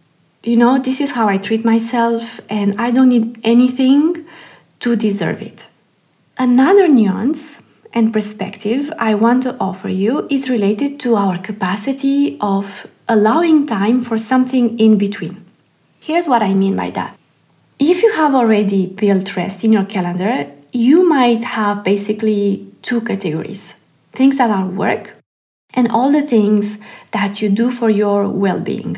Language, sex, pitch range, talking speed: English, female, 205-245 Hz, 150 wpm